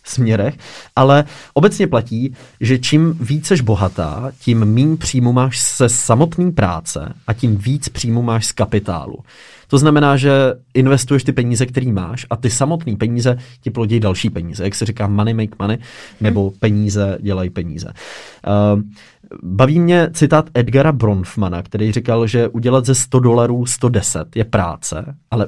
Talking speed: 155 wpm